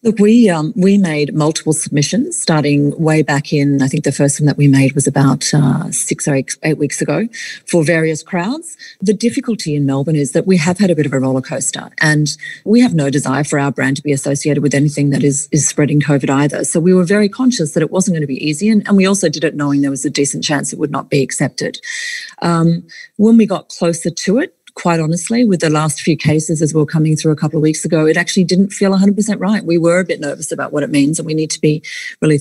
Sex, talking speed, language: female, 255 wpm, English